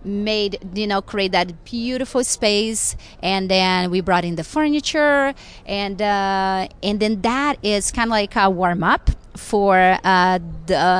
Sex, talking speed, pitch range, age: female, 155 wpm, 190-220 Hz, 30-49